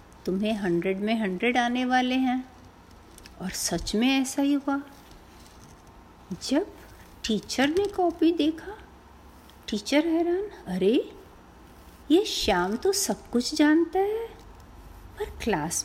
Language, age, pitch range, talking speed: Hindi, 50-69, 205-315 Hz, 115 wpm